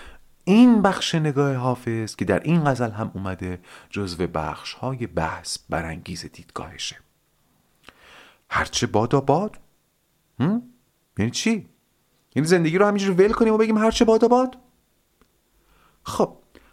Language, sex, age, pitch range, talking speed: Persian, male, 40-59, 100-165 Hz, 120 wpm